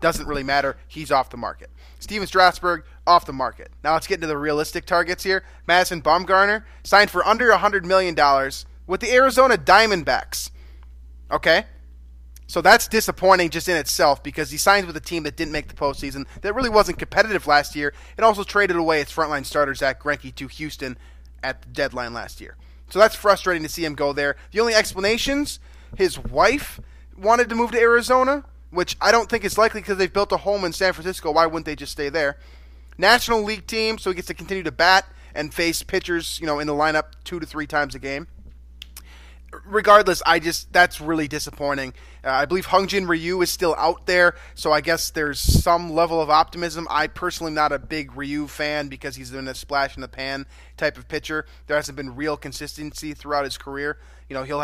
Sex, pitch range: male, 140-185 Hz